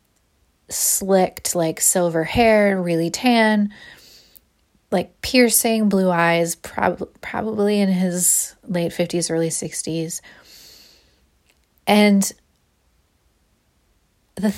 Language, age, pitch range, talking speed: English, 30-49, 165-200 Hz, 80 wpm